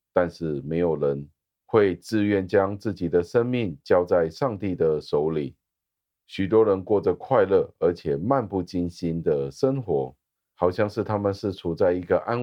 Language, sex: Chinese, male